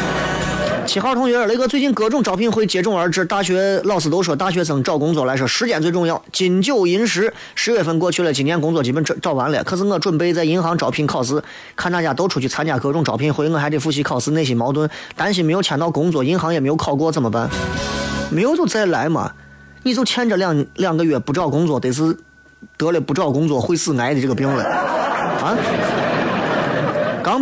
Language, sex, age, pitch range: Chinese, male, 20-39, 145-190 Hz